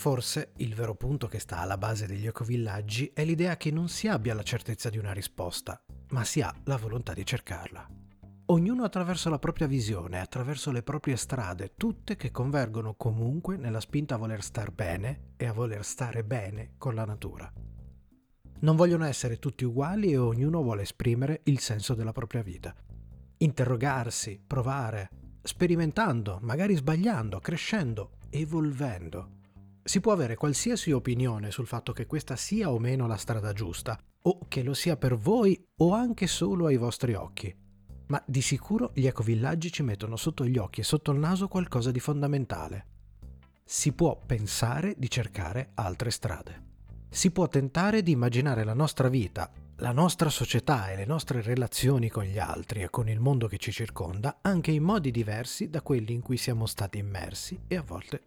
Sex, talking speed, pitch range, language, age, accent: male, 170 wpm, 105-150 Hz, Italian, 30-49, native